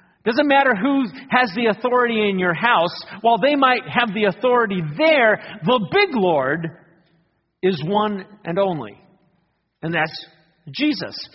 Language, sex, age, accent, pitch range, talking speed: English, male, 50-69, American, 185-250 Hz, 145 wpm